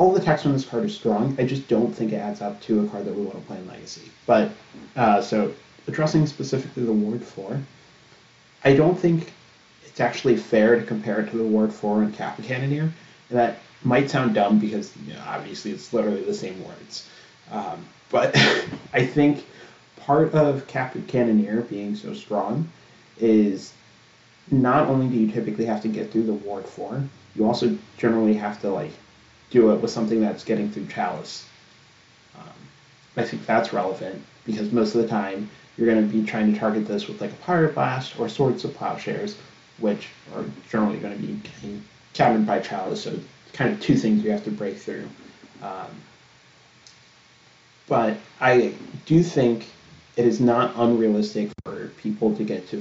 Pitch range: 105-135 Hz